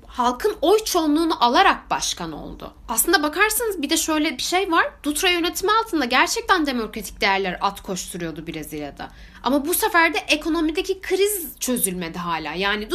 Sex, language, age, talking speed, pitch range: female, Turkish, 10-29, 150 wpm, 235-360 Hz